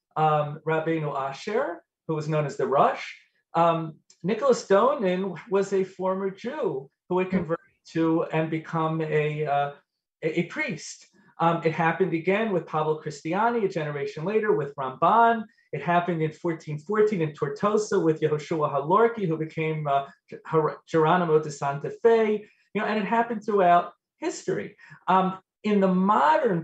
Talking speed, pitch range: 150 wpm, 160-205 Hz